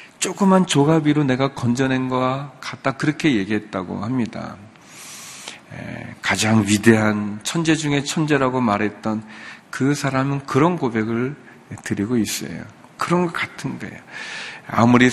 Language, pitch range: Korean, 115-180 Hz